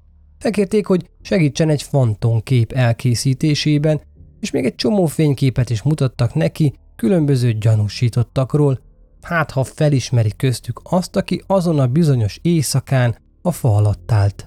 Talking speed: 120 wpm